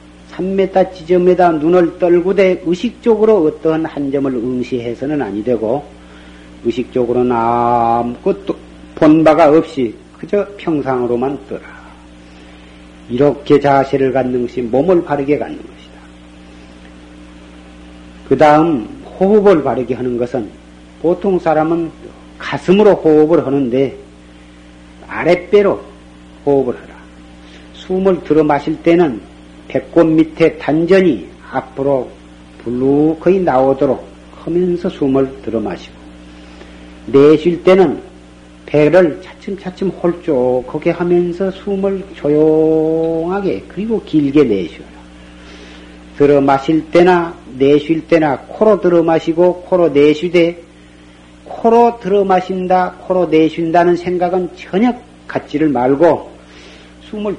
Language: Korean